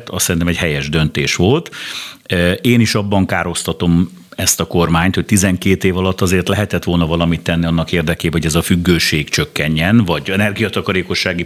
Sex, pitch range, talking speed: male, 85-105 Hz, 160 wpm